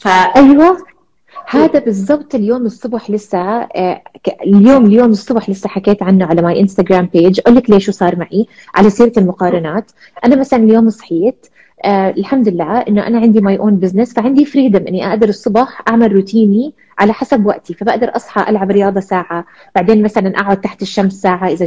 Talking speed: 165 wpm